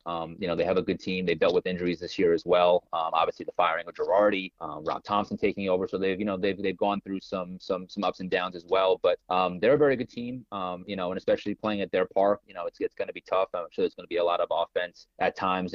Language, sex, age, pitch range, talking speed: English, male, 30-49, 90-105 Hz, 300 wpm